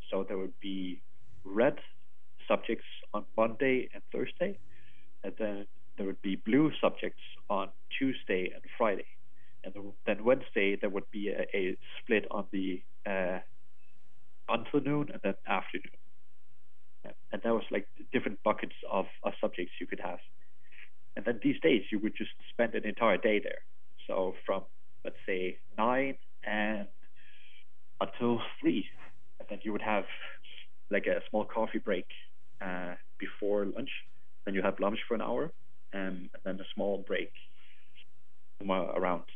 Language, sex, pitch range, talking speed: English, male, 95-115 Hz, 145 wpm